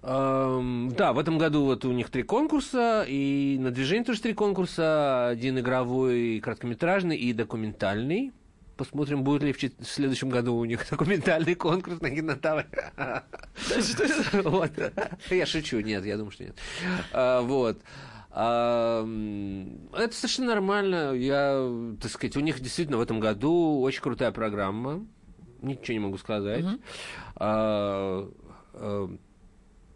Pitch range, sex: 105-140 Hz, male